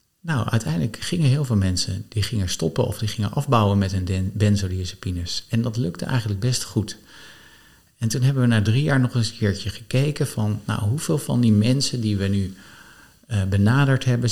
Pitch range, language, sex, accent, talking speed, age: 100-120 Hz, Dutch, male, Dutch, 195 wpm, 50-69